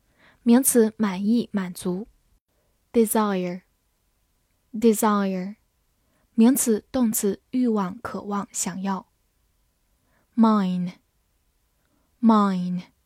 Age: 10-29